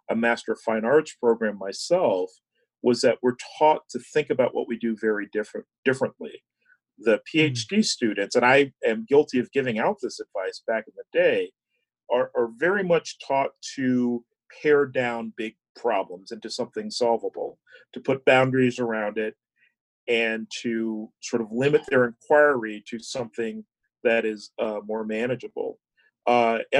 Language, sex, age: English, male, 40-59